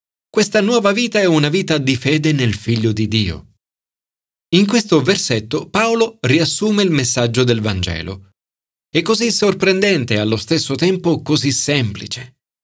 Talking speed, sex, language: 140 wpm, male, Italian